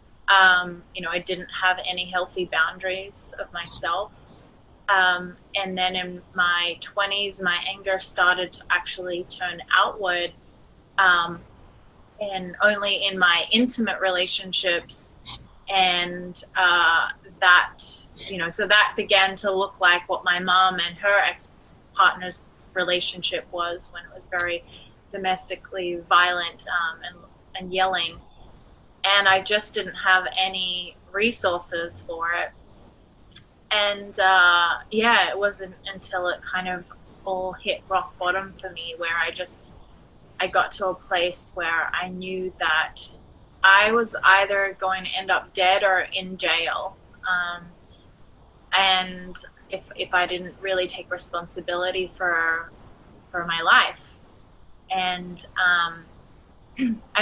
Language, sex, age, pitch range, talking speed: English, female, 30-49, 175-195 Hz, 130 wpm